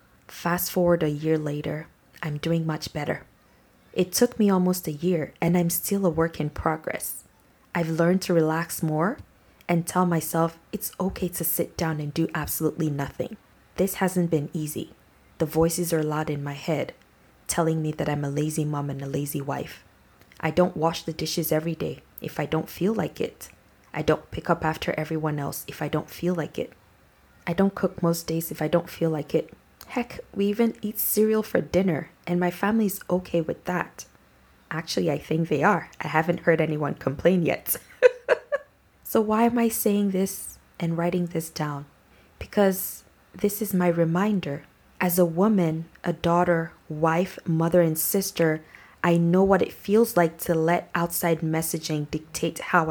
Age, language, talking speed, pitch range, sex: 20-39, English, 180 wpm, 155-180 Hz, female